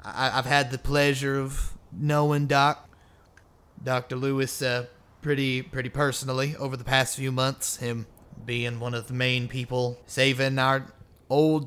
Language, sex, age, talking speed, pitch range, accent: English, male, 30-49, 145 wpm, 120-140 Hz, American